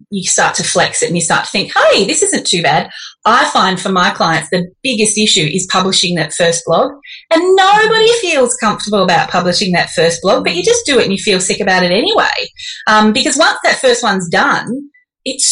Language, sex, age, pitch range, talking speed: English, female, 20-39, 190-280 Hz, 220 wpm